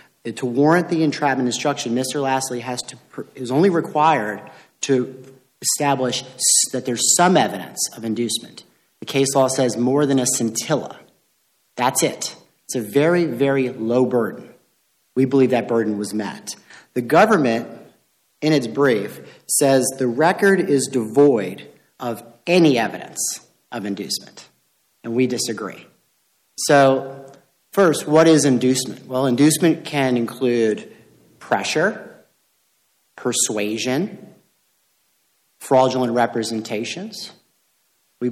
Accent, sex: American, male